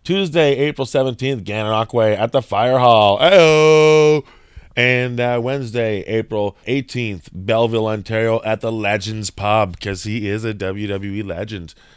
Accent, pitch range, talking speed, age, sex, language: American, 95-120 Hz, 130 wpm, 20-39, male, English